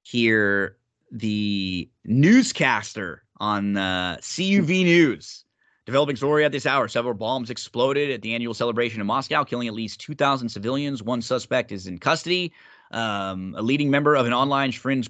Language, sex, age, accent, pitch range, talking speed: English, male, 30-49, American, 110-140 Hz, 155 wpm